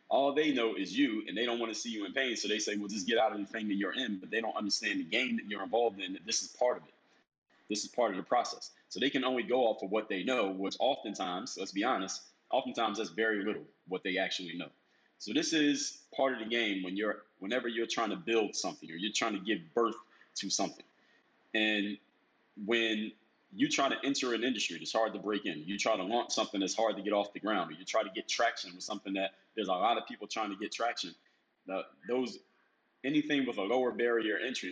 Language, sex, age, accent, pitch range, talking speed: English, male, 30-49, American, 100-125 Hz, 250 wpm